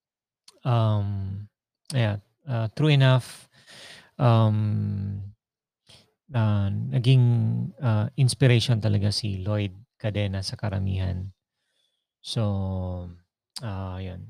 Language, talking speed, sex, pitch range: Filipino, 75 wpm, male, 100-120 Hz